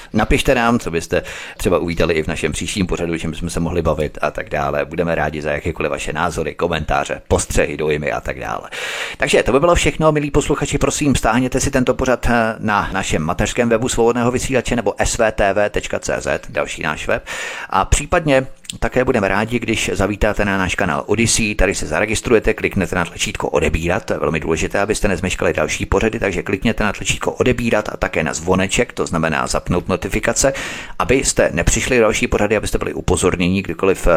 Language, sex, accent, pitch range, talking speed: Czech, male, native, 85-125 Hz, 180 wpm